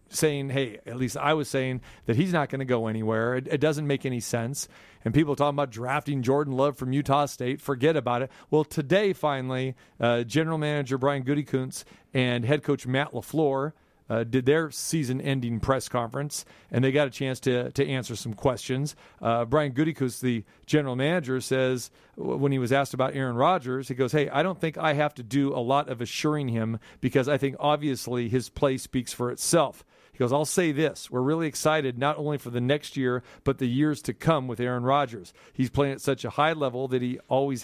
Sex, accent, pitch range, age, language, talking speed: male, American, 125-150 Hz, 40-59, English, 210 wpm